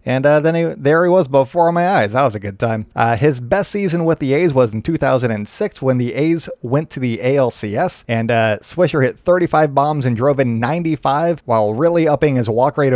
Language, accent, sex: English, American, male